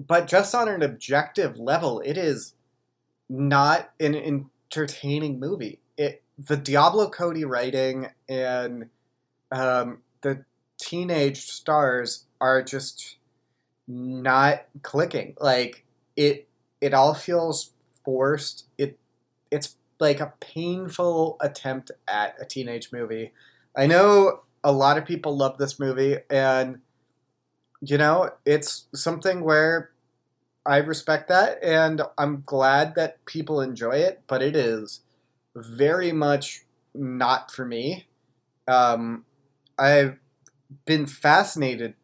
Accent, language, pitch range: American, English, 125-150 Hz